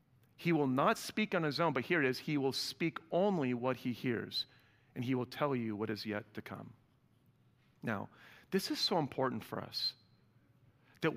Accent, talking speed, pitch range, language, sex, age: American, 195 wpm, 130-175 Hz, English, male, 40-59